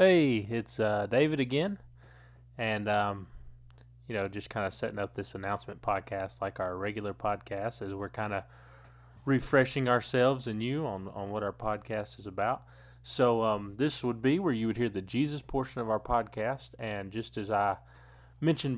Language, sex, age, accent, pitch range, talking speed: English, male, 30-49, American, 105-125 Hz, 180 wpm